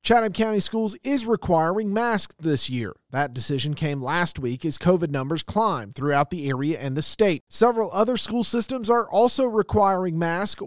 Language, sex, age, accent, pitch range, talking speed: English, male, 40-59, American, 150-200 Hz, 175 wpm